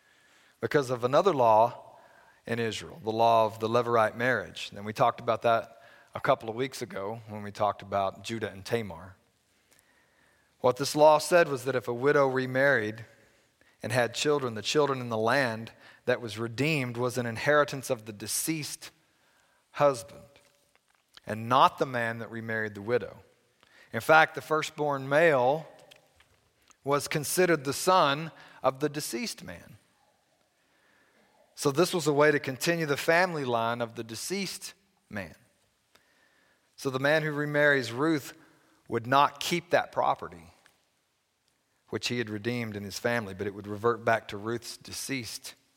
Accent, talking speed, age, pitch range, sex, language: American, 155 wpm, 40-59, 110-145 Hz, male, English